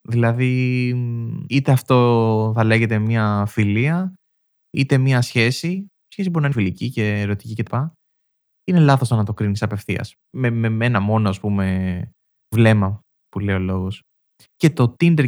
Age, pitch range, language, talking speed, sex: 20-39, 110-150 Hz, Greek, 150 wpm, male